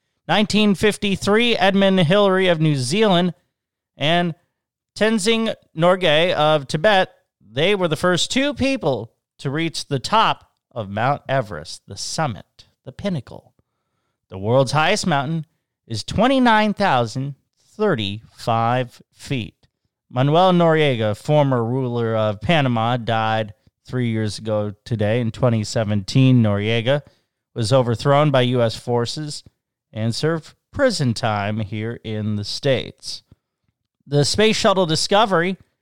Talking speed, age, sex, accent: 110 wpm, 30-49, male, American